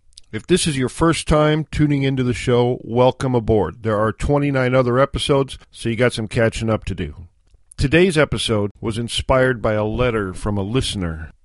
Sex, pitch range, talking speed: male, 105-130 Hz, 185 wpm